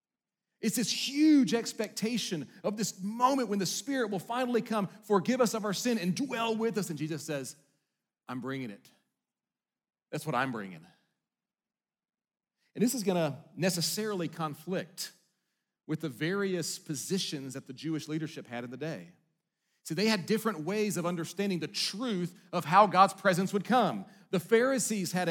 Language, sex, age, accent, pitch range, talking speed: English, male, 40-59, American, 165-215 Hz, 160 wpm